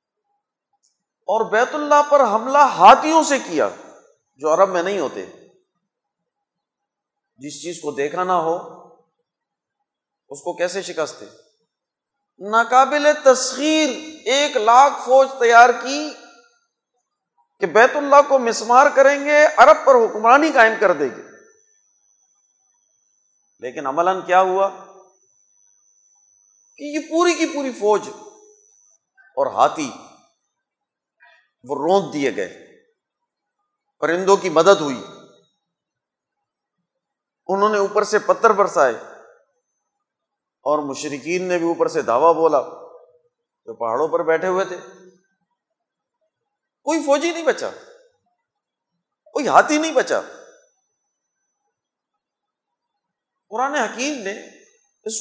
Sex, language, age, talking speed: male, Urdu, 40-59, 105 wpm